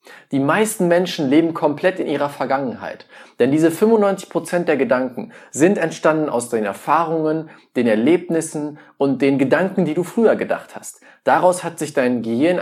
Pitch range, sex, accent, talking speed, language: 125-170 Hz, male, German, 155 wpm, German